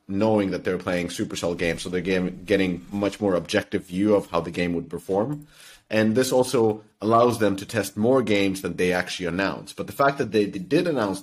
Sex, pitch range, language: male, 90-110 Hz, English